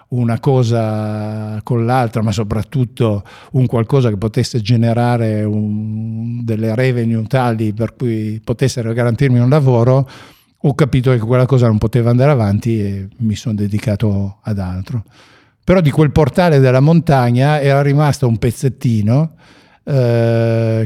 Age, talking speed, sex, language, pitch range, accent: 50-69, 135 wpm, male, Italian, 115-140 Hz, native